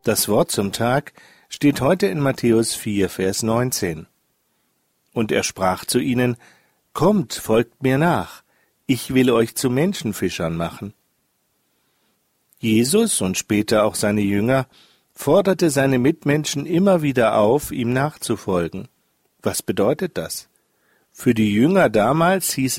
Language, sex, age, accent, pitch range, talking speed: German, male, 40-59, German, 105-145 Hz, 125 wpm